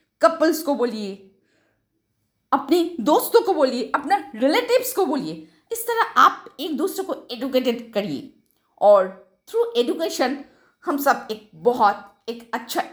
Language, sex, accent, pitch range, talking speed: Hindi, female, native, 230-360 Hz, 130 wpm